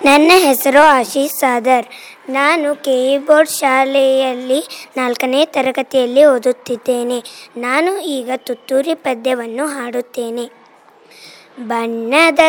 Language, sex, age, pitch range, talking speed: Kannada, male, 20-39, 255-320 Hz, 75 wpm